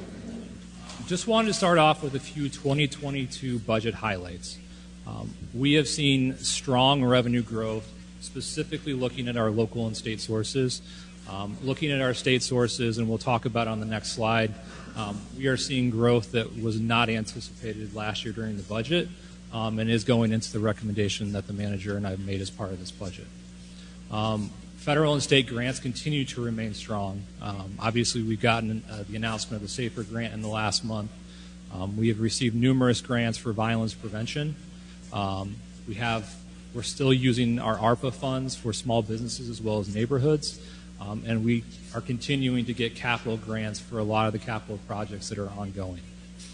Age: 30-49